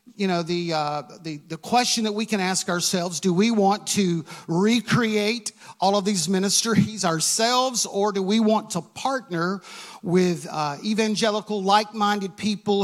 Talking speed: 155 wpm